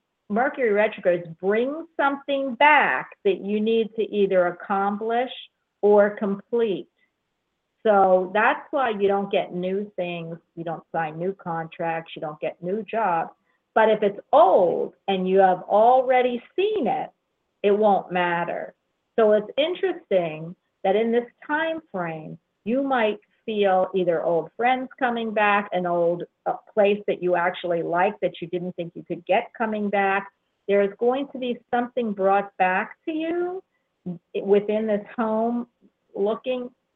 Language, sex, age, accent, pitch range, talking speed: English, female, 50-69, American, 180-240 Hz, 145 wpm